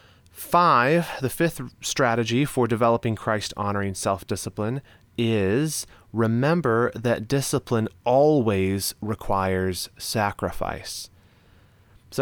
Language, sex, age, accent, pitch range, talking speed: English, male, 30-49, American, 100-135 Hz, 85 wpm